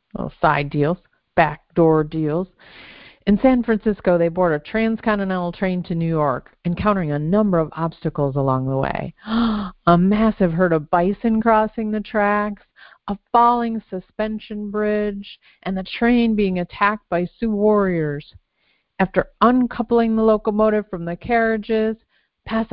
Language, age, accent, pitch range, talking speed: English, 50-69, American, 170-215 Hz, 135 wpm